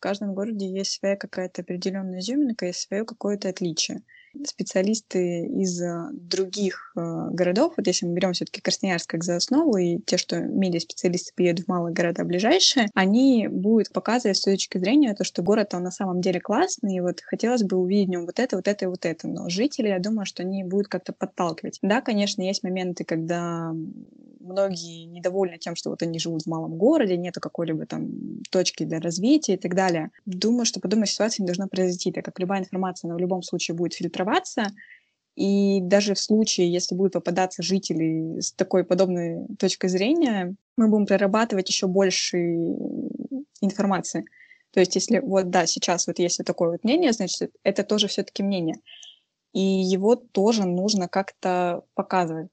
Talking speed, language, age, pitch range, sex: 175 wpm, Russian, 20-39, 180-205 Hz, female